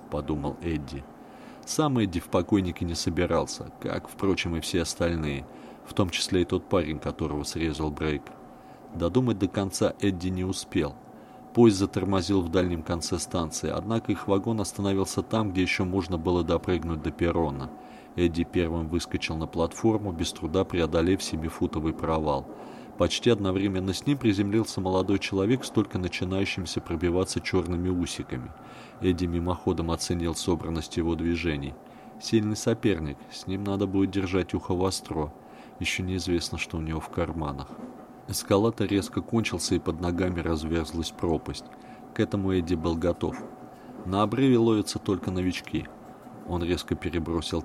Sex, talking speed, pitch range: male, 140 wpm, 85-100 Hz